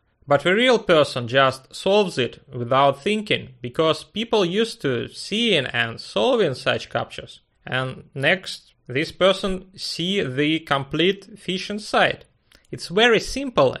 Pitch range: 135-190 Hz